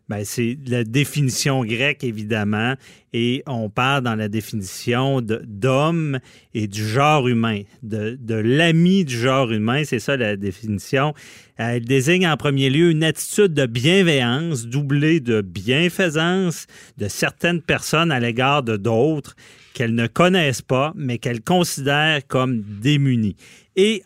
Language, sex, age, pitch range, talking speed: French, male, 40-59, 120-155 Hz, 140 wpm